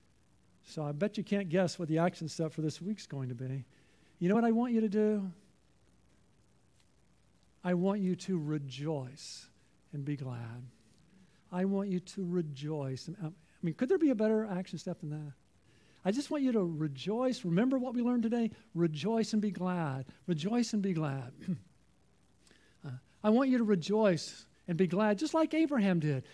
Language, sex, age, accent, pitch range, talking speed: English, male, 50-69, American, 180-285 Hz, 180 wpm